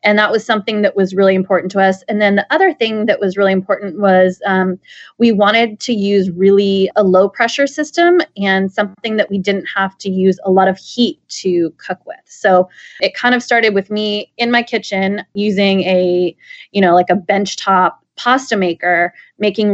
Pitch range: 185-210 Hz